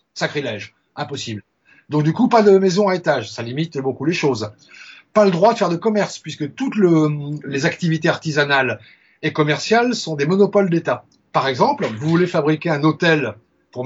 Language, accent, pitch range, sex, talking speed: French, French, 135-190 Hz, male, 180 wpm